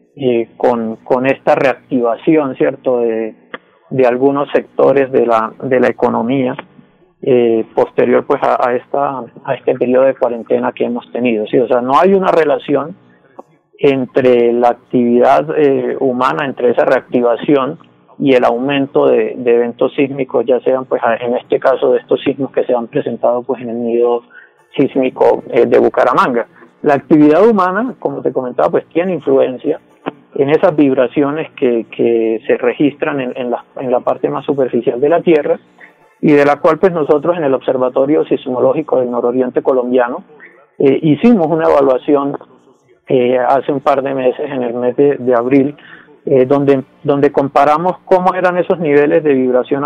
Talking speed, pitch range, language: 165 wpm, 120-150 Hz, Spanish